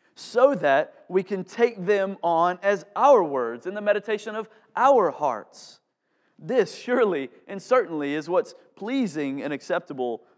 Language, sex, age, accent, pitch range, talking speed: English, male, 30-49, American, 125-185 Hz, 145 wpm